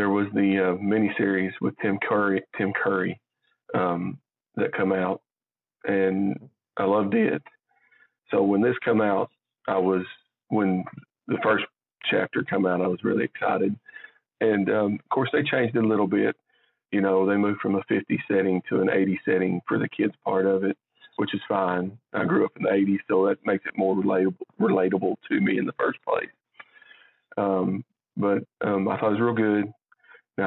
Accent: American